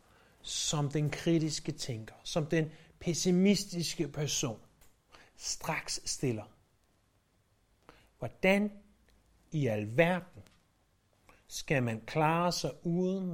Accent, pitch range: native, 130-195 Hz